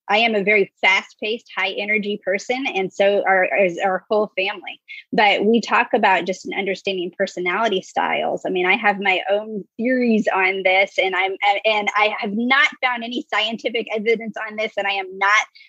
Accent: American